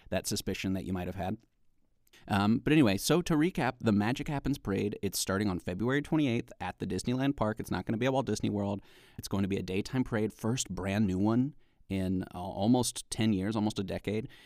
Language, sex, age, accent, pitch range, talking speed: English, male, 30-49, American, 100-125 Hz, 225 wpm